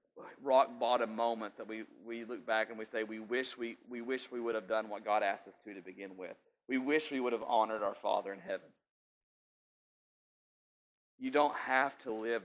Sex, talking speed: male, 205 wpm